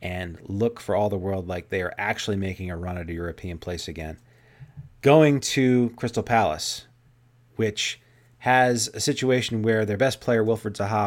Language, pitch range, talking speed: English, 100-125 Hz, 175 wpm